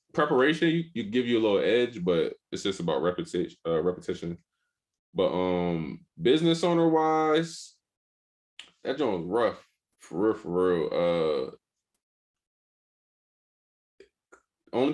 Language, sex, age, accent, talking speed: English, male, 20-39, American, 115 wpm